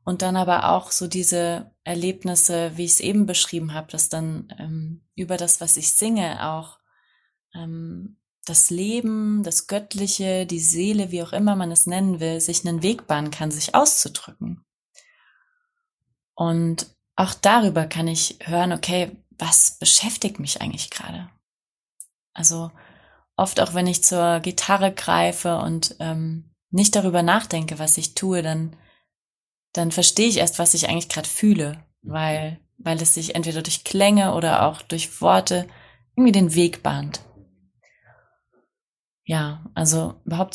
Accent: German